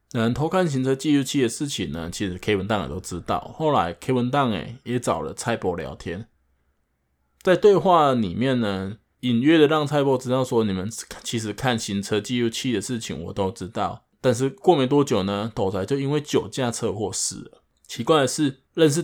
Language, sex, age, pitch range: Chinese, male, 20-39, 95-130 Hz